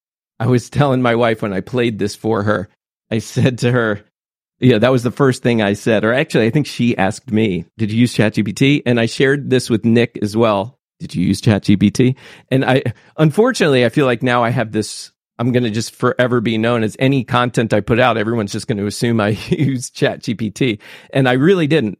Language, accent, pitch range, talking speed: English, American, 110-135 Hz, 220 wpm